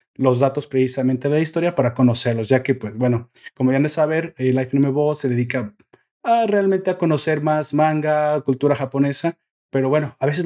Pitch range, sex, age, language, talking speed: 130-160 Hz, male, 30-49, Spanish, 205 wpm